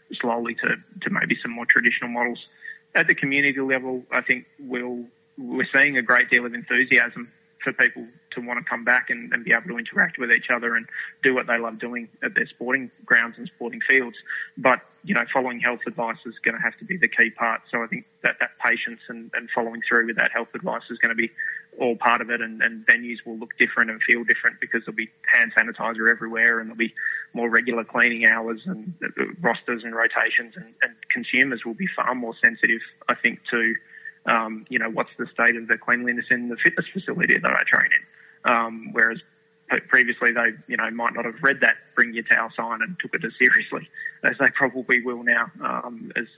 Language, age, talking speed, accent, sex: English, 20-39, 220 wpm, Australian, male